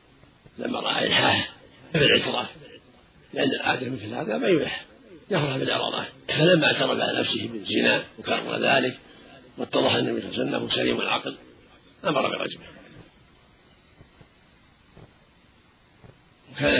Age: 50-69